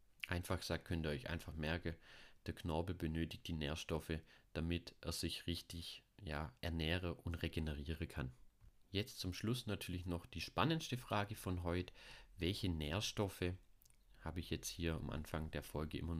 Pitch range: 80-90 Hz